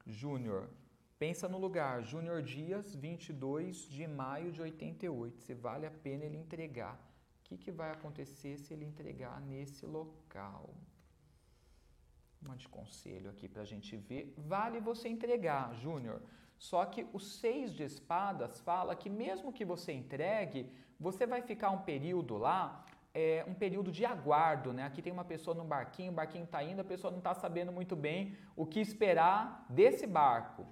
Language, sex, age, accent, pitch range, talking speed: Portuguese, male, 40-59, Brazilian, 140-205 Hz, 170 wpm